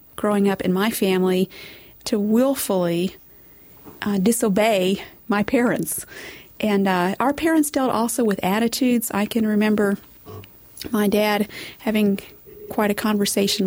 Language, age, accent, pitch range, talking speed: English, 40-59, American, 195-230 Hz, 125 wpm